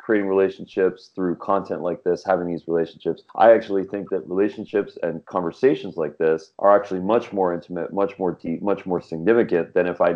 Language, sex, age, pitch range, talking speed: English, male, 30-49, 85-100 Hz, 190 wpm